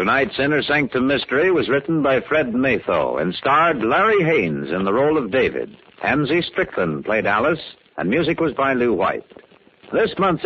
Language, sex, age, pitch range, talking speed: English, male, 60-79, 75-115 Hz, 170 wpm